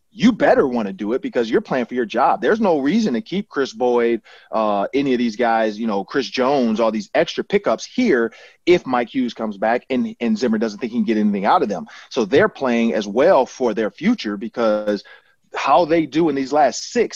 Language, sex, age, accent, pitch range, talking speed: English, male, 30-49, American, 115-140 Hz, 230 wpm